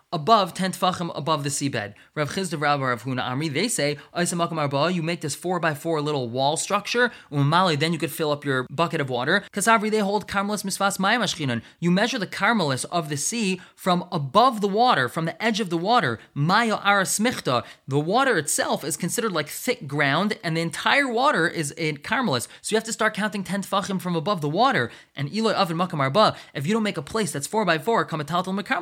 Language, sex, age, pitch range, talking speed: English, male, 20-39, 150-200 Hz, 175 wpm